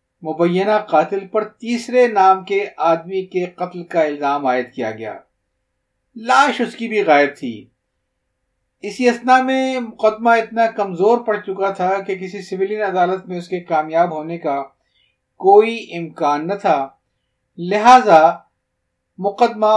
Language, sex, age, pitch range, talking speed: Urdu, male, 50-69, 150-210 Hz, 135 wpm